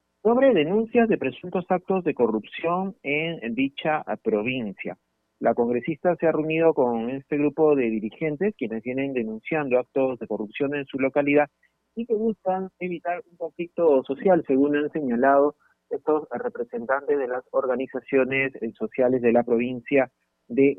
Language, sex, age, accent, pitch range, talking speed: Spanish, male, 30-49, Argentinian, 120-165 Hz, 140 wpm